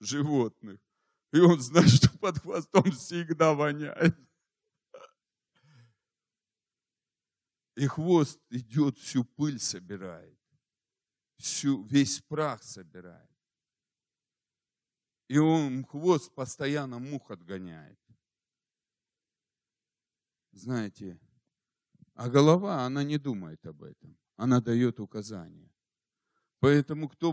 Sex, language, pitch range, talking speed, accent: male, Russian, 125-155 Hz, 85 wpm, native